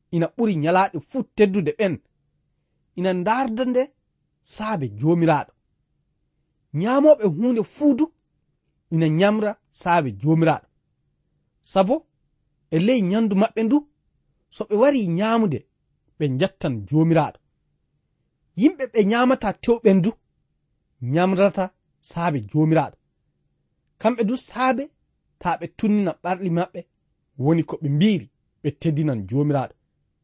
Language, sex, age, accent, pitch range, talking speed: English, male, 40-59, South African, 145-220 Hz, 100 wpm